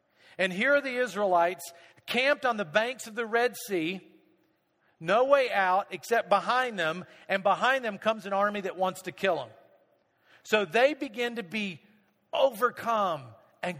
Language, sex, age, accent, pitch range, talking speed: English, male, 50-69, American, 185-255 Hz, 160 wpm